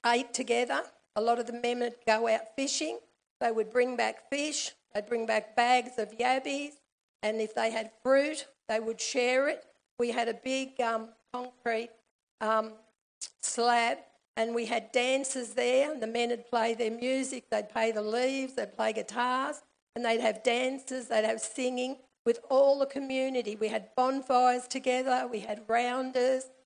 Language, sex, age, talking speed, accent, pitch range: English, female, 50-69, 170 wpm, Australian, 225-260 Hz